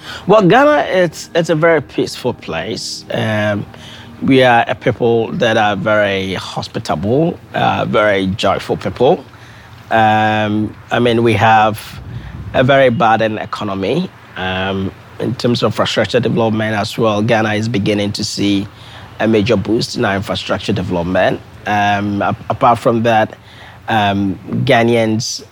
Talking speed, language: 135 wpm, English